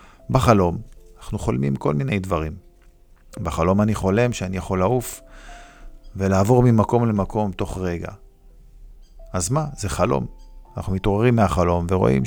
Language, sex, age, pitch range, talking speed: Hebrew, male, 50-69, 85-105 Hz, 120 wpm